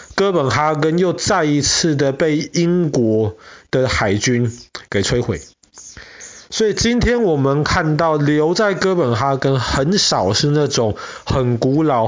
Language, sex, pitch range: Chinese, male, 115-165 Hz